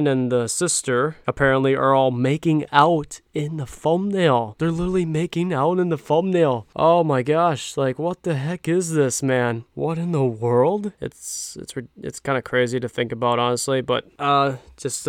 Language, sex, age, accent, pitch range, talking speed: English, male, 20-39, American, 125-155 Hz, 180 wpm